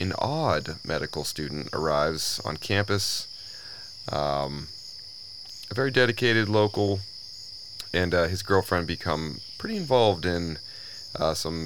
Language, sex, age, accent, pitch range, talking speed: English, male, 30-49, American, 80-105 Hz, 115 wpm